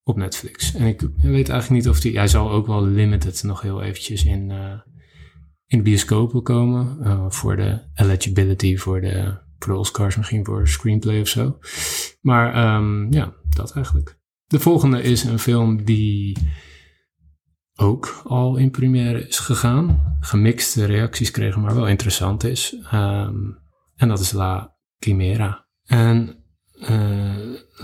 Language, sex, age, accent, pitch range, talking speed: Dutch, male, 20-39, Dutch, 95-115 Hz, 150 wpm